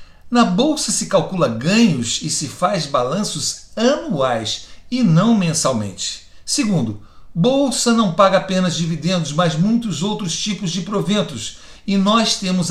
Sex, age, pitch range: male, 60-79, 150-205 Hz